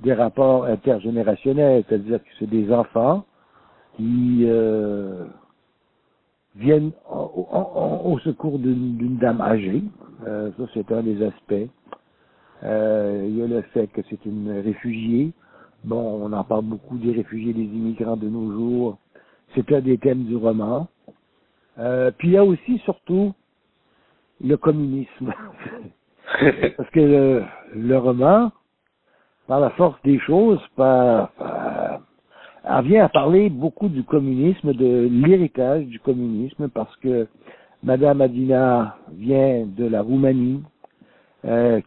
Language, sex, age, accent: French, male, 60-79, French